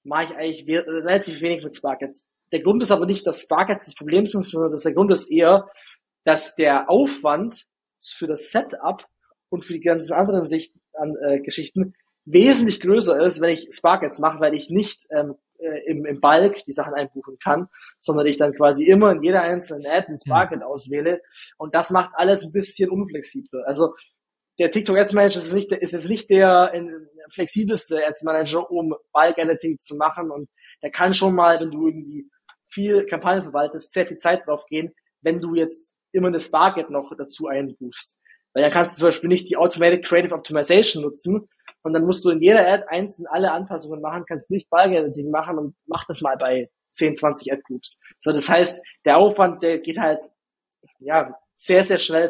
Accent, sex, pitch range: German, male, 155-185 Hz